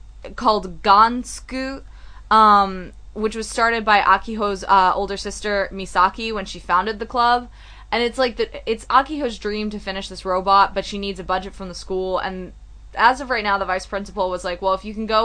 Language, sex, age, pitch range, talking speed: English, female, 20-39, 190-220 Hz, 200 wpm